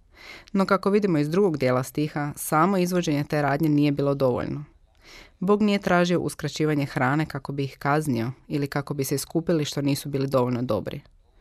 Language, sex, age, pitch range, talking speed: Croatian, female, 20-39, 135-160 Hz, 175 wpm